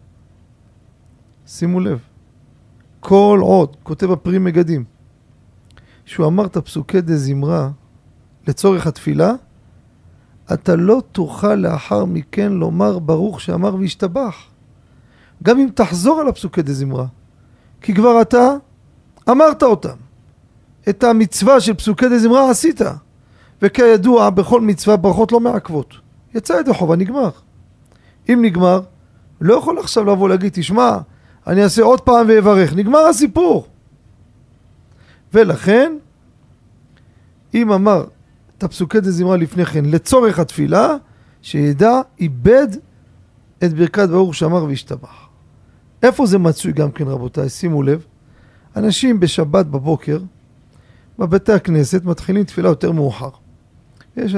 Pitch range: 130-210 Hz